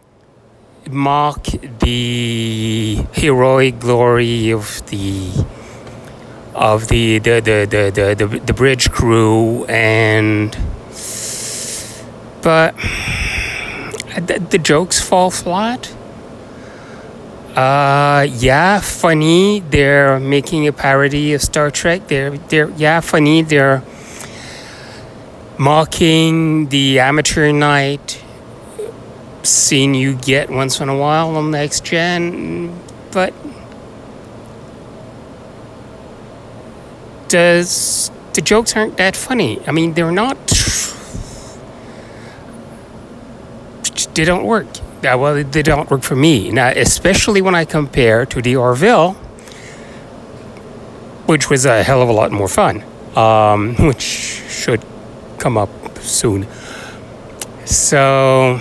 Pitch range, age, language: 110-150 Hz, 30-49, English